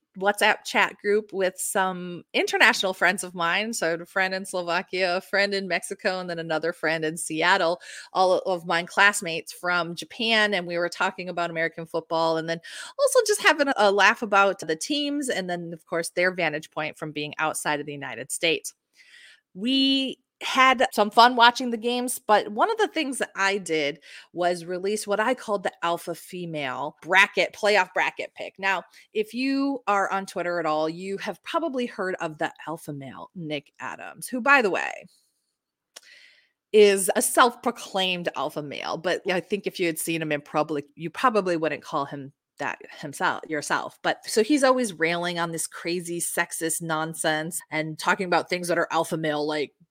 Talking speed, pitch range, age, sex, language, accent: 185 wpm, 165-215 Hz, 30-49, female, English, American